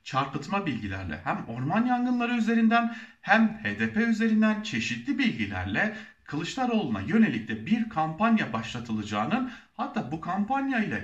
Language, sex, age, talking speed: German, male, 40-59, 110 wpm